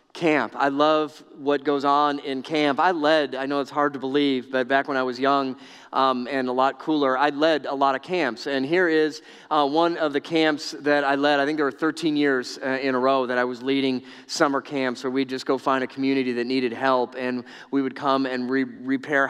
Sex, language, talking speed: male, English, 235 wpm